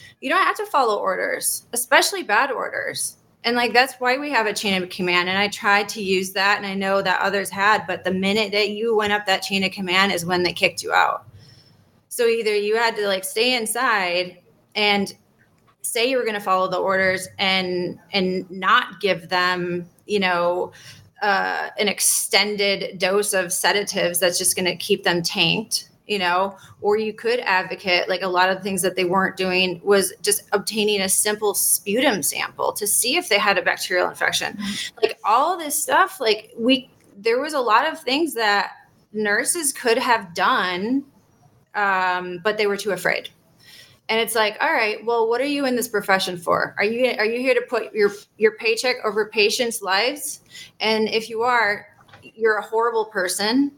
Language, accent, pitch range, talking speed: English, American, 190-230 Hz, 190 wpm